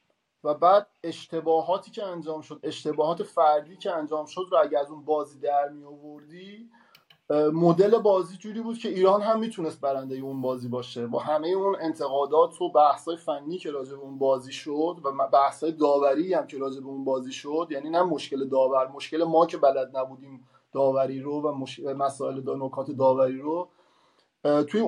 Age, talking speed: 30-49, 165 wpm